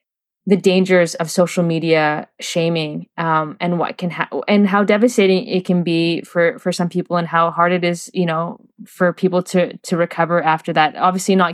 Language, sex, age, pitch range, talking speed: English, female, 20-39, 170-200 Hz, 190 wpm